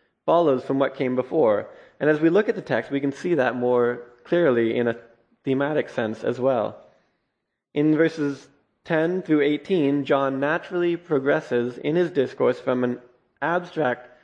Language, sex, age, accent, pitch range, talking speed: English, male, 20-39, American, 125-160 Hz, 160 wpm